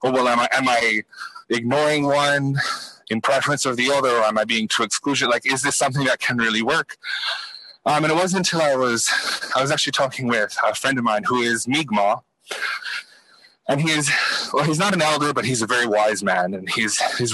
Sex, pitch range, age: male, 120-150 Hz, 20-39